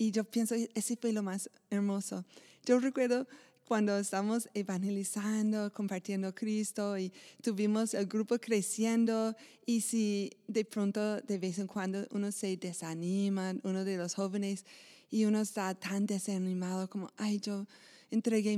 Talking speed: 140 wpm